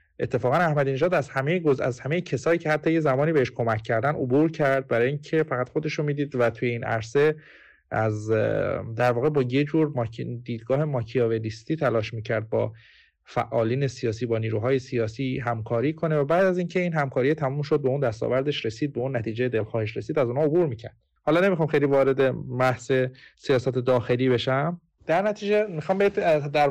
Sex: male